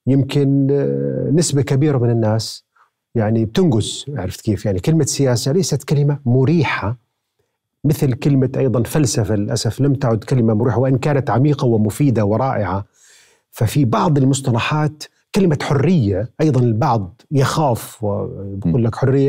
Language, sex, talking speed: Arabic, male, 125 wpm